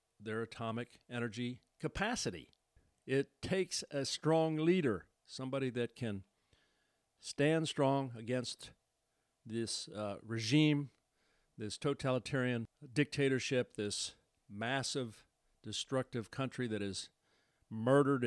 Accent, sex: American, male